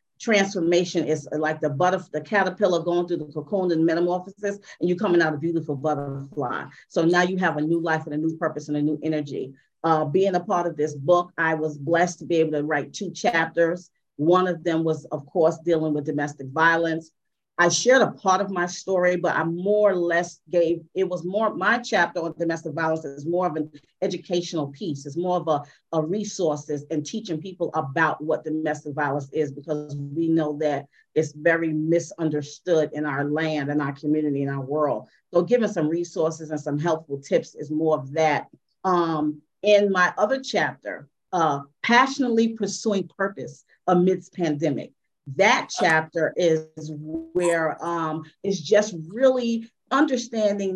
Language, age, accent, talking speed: English, 40-59, American, 180 wpm